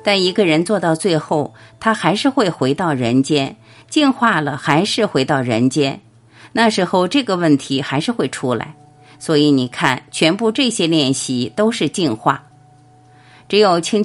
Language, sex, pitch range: Chinese, female, 135-220 Hz